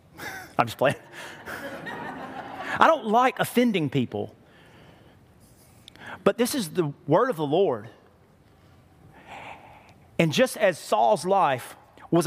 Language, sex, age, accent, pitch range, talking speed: English, male, 40-59, American, 135-185 Hz, 110 wpm